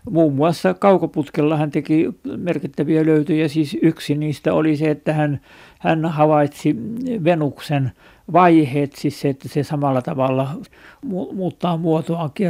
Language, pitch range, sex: Finnish, 145-170 Hz, male